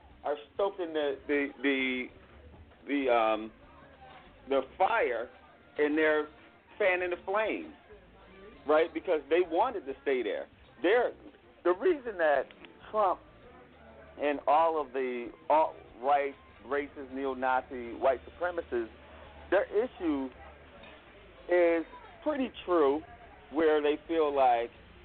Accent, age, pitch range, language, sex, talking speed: American, 40-59, 135-175 Hz, English, male, 105 wpm